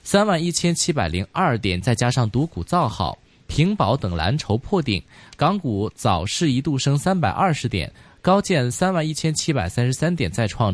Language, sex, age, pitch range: Chinese, male, 20-39, 115-165 Hz